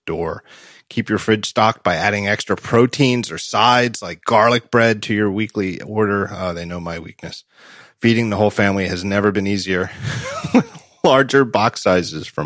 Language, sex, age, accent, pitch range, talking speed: English, male, 30-49, American, 105-140 Hz, 170 wpm